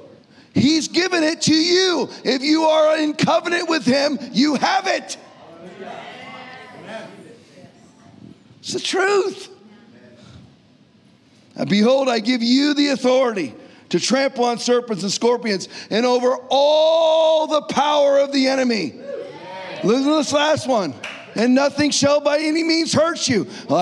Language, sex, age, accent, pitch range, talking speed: English, male, 40-59, American, 220-300 Hz, 130 wpm